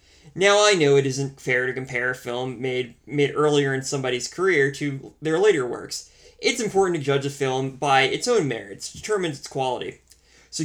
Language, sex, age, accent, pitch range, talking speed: English, male, 20-39, American, 135-160 Hz, 190 wpm